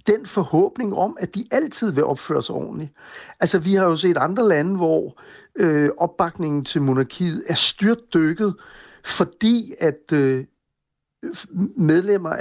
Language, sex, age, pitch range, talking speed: Danish, male, 60-79, 155-205 Hz, 140 wpm